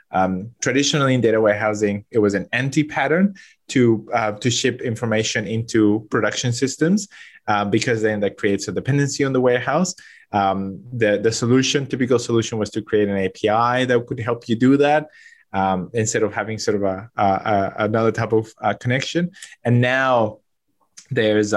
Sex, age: male, 20-39